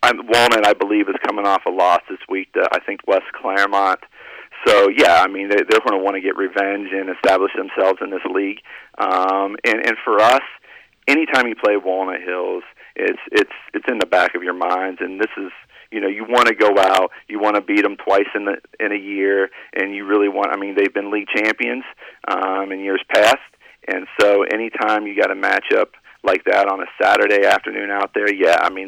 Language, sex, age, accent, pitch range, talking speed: English, male, 40-59, American, 95-120 Hz, 220 wpm